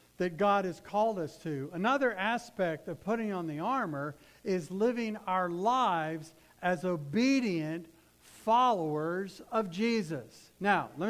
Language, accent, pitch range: English, American, 155-225 Hz